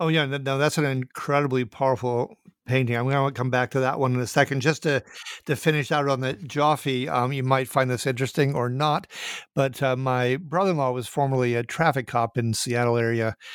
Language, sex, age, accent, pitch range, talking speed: English, male, 50-69, American, 125-150 Hz, 210 wpm